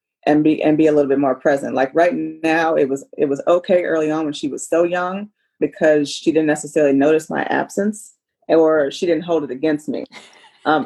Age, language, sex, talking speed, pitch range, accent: 30-49, English, female, 215 wpm, 145-180 Hz, American